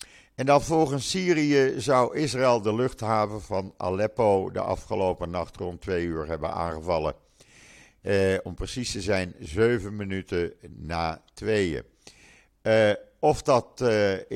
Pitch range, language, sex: 80-110 Hz, Dutch, male